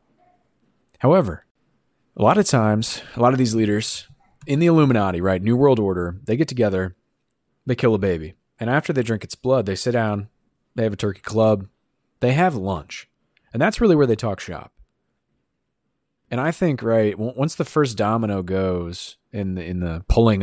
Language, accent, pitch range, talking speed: English, American, 95-125 Hz, 180 wpm